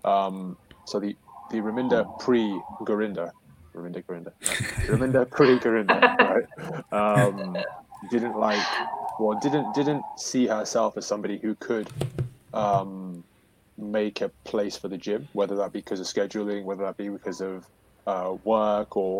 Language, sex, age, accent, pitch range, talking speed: English, male, 20-39, British, 95-110 Hz, 145 wpm